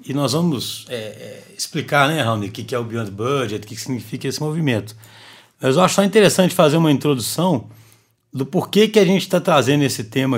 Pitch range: 125-175 Hz